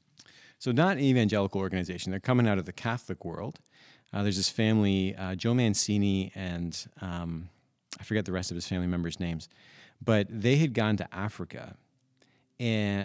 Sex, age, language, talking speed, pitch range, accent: male, 30-49, English, 170 wpm, 95-120 Hz, American